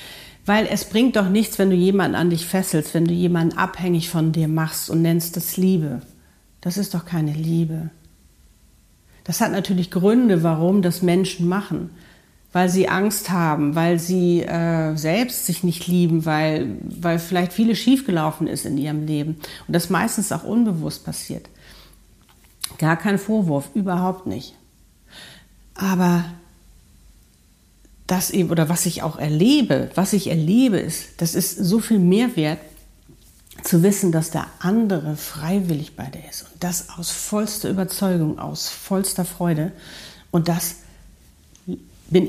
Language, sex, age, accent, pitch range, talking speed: German, female, 50-69, German, 160-190 Hz, 150 wpm